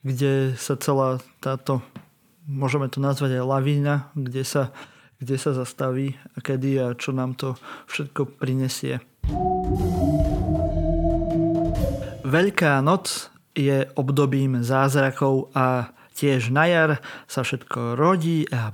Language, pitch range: Slovak, 135-160 Hz